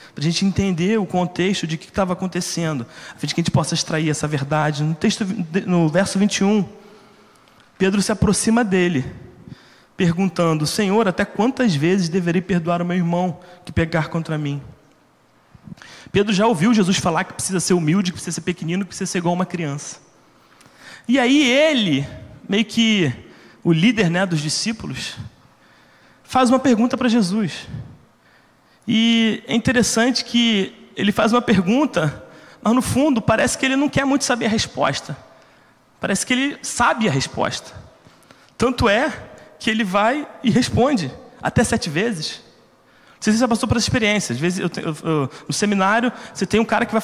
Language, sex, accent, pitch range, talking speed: Portuguese, male, Brazilian, 170-230 Hz, 175 wpm